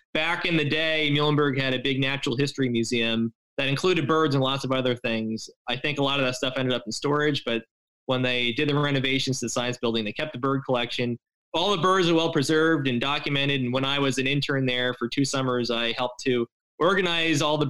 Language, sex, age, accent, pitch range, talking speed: English, male, 20-39, American, 125-150 Hz, 230 wpm